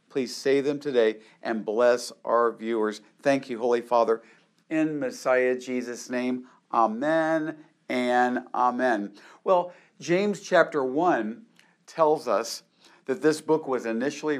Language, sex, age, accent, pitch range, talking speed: English, male, 50-69, American, 115-155 Hz, 125 wpm